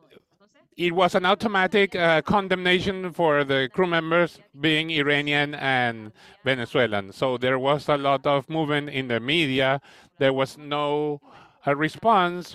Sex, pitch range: male, 135-175 Hz